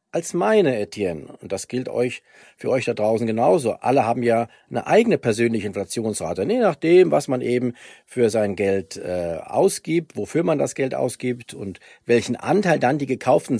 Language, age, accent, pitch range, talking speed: German, 40-59, German, 115-150 Hz, 180 wpm